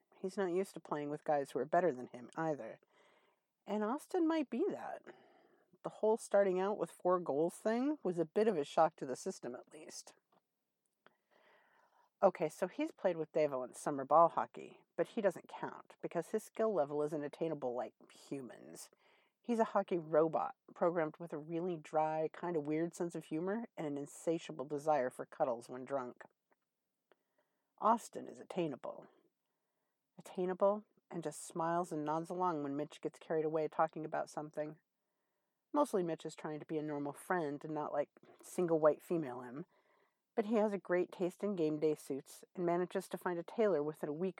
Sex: female